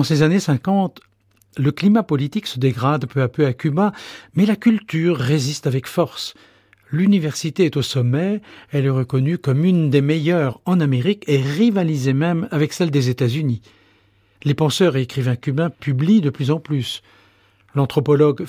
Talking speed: 165 wpm